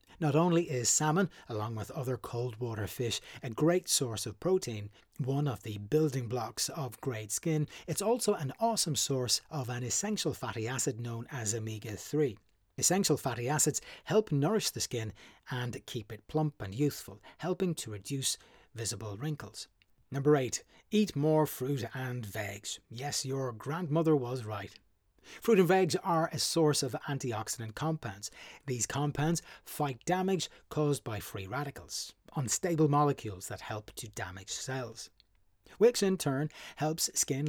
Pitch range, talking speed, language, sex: 115-155 Hz, 150 wpm, English, male